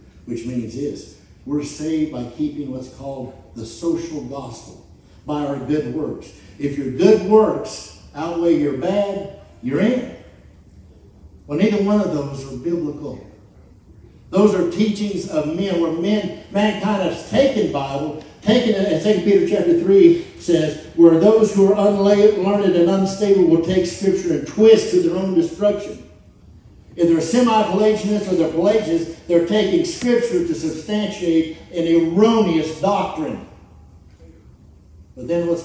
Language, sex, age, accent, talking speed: English, male, 60-79, American, 145 wpm